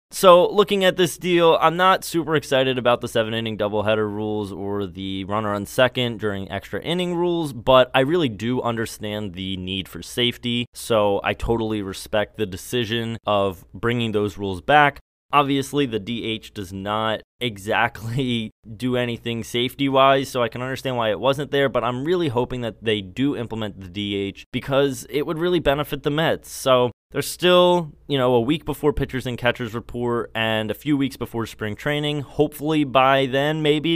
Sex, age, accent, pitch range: male, 20-39, American, 105-145 Hz